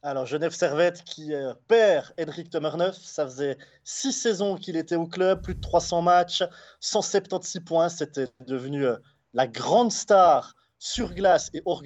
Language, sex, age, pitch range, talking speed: French, male, 30-49, 145-185 Hz, 160 wpm